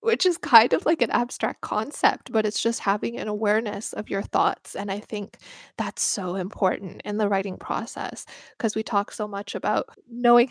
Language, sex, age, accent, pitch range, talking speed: English, female, 10-29, American, 205-250 Hz, 195 wpm